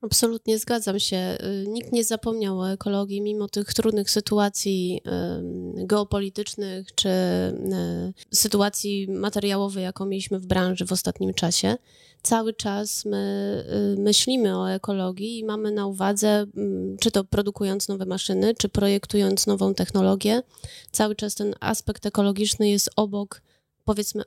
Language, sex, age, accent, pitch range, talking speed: Polish, female, 30-49, native, 195-215 Hz, 120 wpm